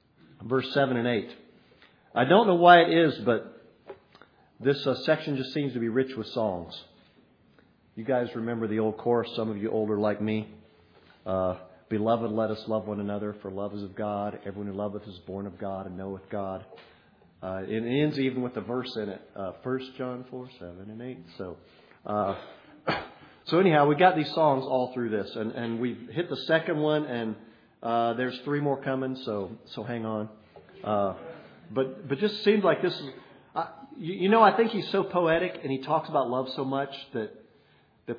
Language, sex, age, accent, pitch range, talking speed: English, male, 50-69, American, 110-155 Hz, 195 wpm